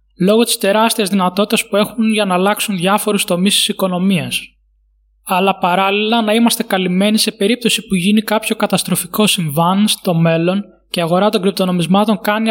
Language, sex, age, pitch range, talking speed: Greek, male, 20-39, 165-205 Hz, 160 wpm